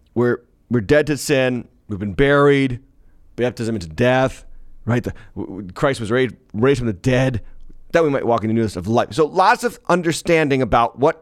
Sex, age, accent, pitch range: male, 30-49, American, 120-165 Hz